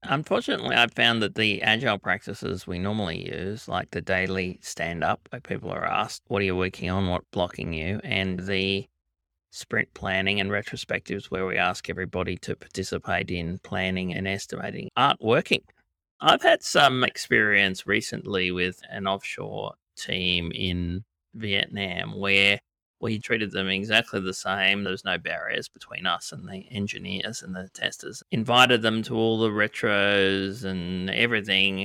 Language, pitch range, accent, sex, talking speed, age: English, 95-105 Hz, Australian, male, 155 wpm, 30-49